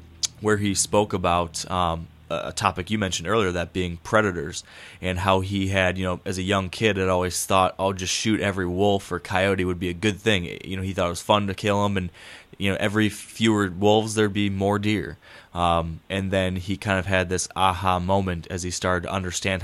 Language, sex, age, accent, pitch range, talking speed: English, male, 20-39, American, 85-100 Hz, 225 wpm